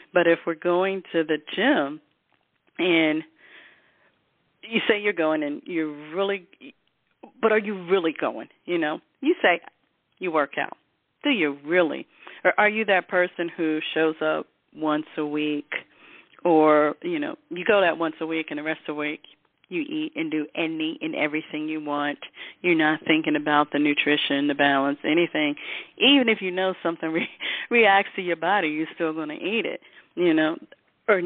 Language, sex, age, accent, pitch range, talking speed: English, female, 40-59, American, 155-205 Hz, 175 wpm